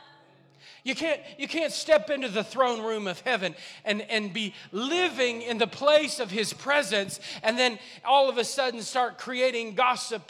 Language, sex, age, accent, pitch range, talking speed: English, male, 40-59, American, 220-295 Hz, 170 wpm